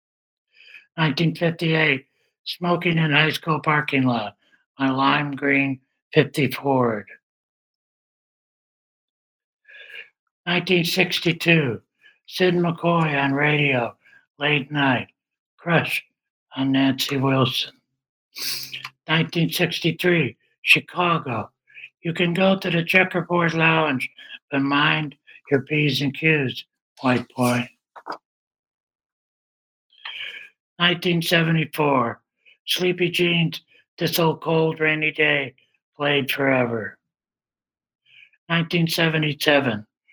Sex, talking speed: male, 75 wpm